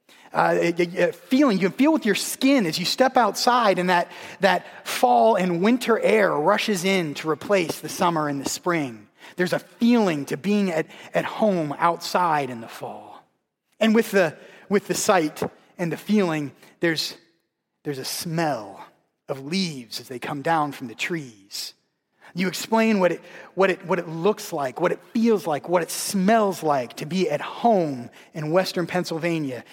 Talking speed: 175 wpm